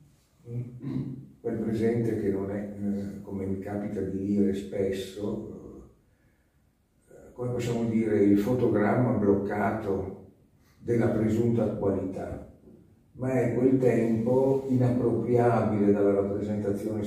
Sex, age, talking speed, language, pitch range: male, 50-69, 95 wpm, Italian, 100-130 Hz